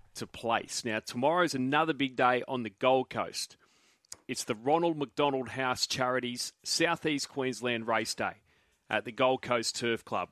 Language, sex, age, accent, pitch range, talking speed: English, male, 30-49, Australian, 115-145 Hz, 155 wpm